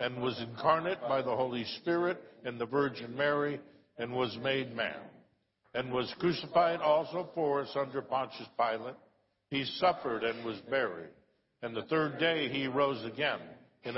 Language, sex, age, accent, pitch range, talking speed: English, male, 60-79, American, 125-155 Hz, 160 wpm